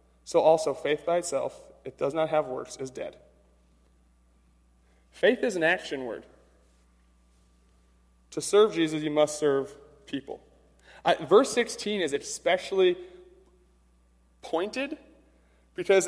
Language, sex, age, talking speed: English, male, 20-39, 115 wpm